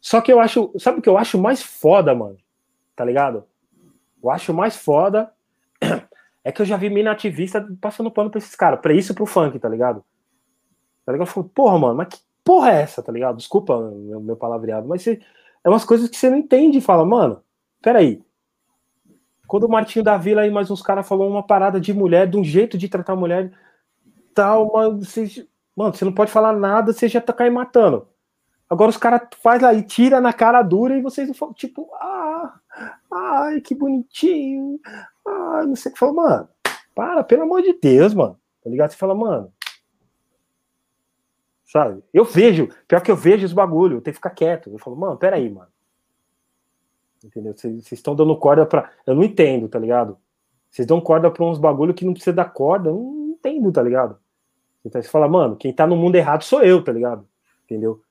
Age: 20-39